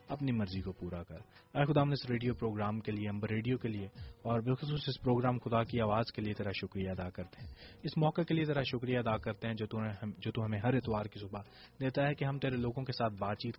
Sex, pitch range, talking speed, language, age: male, 105-130 Hz, 275 wpm, English, 30-49